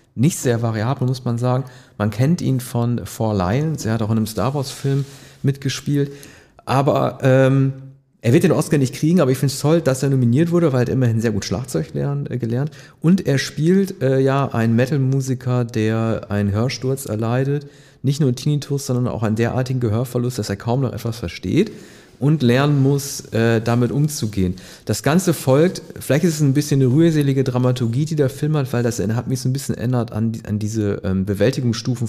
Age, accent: 40-59, German